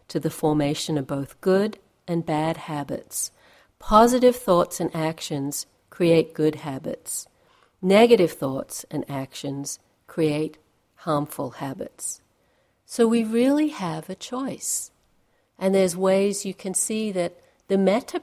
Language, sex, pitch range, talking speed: English, female, 160-205 Hz, 125 wpm